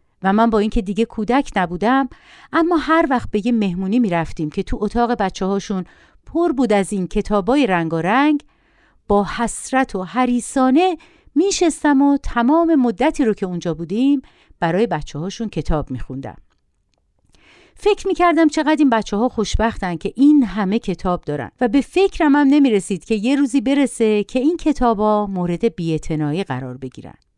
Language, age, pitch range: Persian, 50-69, 195-300 Hz